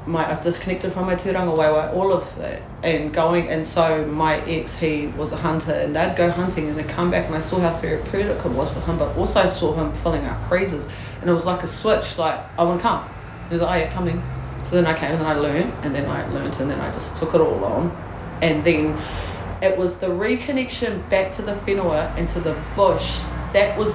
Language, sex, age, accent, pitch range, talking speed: English, female, 30-49, Australian, 160-215 Hz, 250 wpm